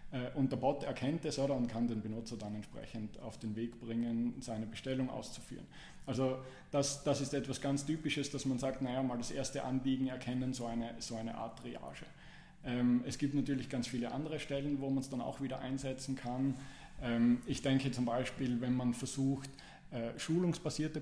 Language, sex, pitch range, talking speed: German, male, 125-135 Hz, 185 wpm